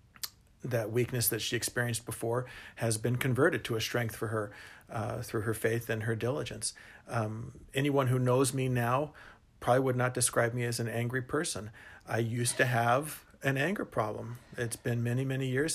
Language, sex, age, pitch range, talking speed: English, male, 50-69, 120-135 Hz, 185 wpm